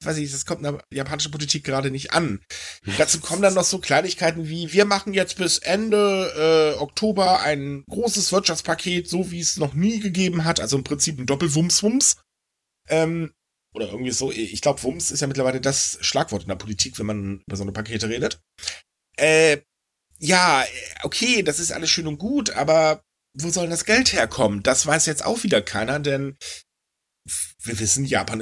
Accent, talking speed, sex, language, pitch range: German, 185 wpm, male, German, 125-170 Hz